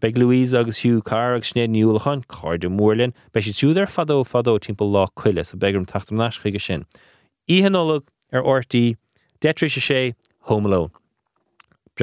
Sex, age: male, 30-49